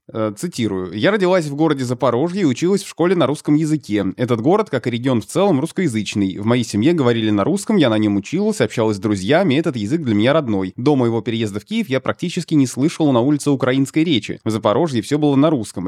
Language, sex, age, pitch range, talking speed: Russian, male, 20-39, 110-150 Hz, 220 wpm